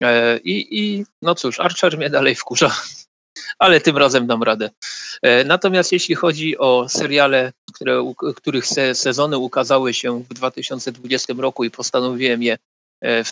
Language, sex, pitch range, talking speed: Polish, male, 125-160 Hz, 140 wpm